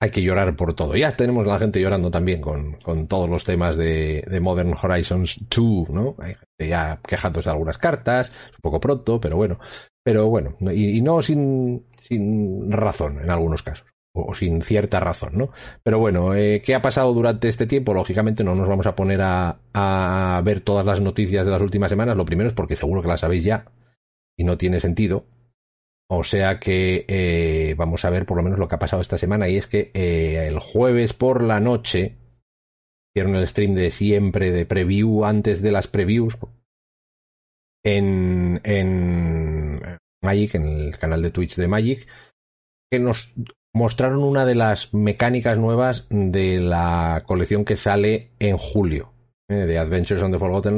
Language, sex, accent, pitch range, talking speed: Spanish, male, Spanish, 85-110 Hz, 185 wpm